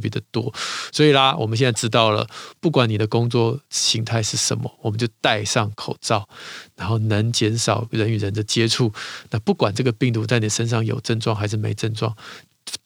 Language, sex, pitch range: Chinese, male, 110-135 Hz